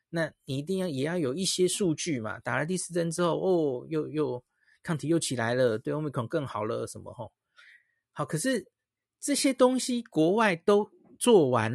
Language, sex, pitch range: Chinese, male, 130-175 Hz